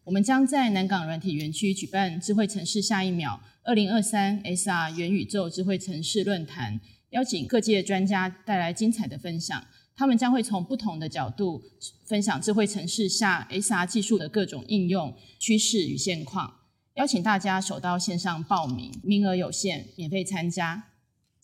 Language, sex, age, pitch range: Chinese, female, 20-39, 170-215 Hz